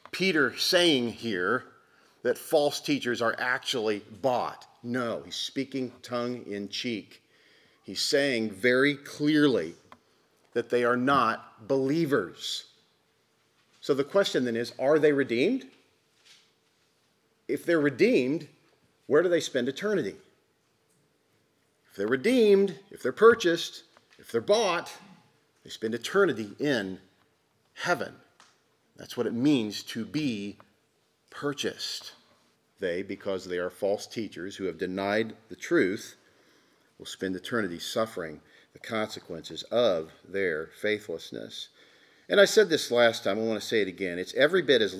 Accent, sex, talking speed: American, male, 125 wpm